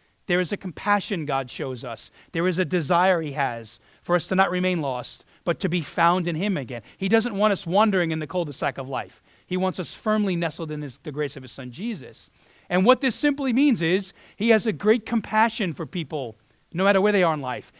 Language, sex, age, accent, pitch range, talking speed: English, male, 40-59, American, 140-195 Hz, 235 wpm